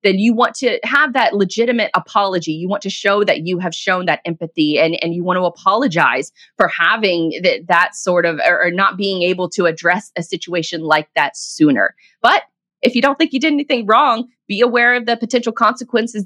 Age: 20-39